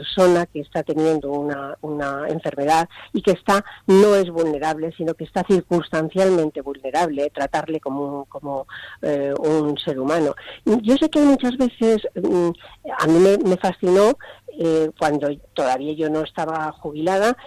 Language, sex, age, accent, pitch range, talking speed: Spanish, female, 40-59, Spanish, 150-195 Hz, 155 wpm